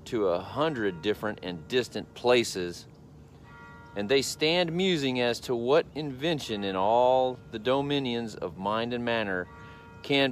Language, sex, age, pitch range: English, male, 40-59, 95-115 Hz